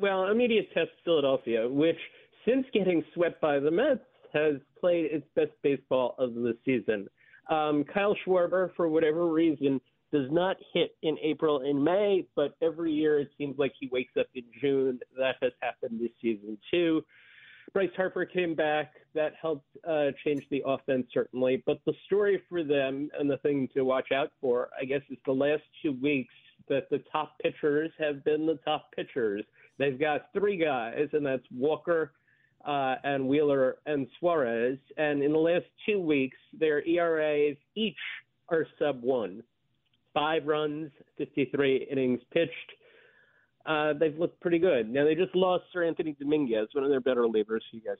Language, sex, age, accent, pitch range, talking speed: English, male, 40-59, American, 130-165 Hz, 170 wpm